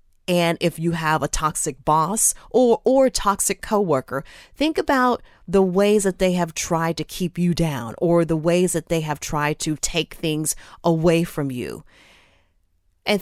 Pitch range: 160-210 Hz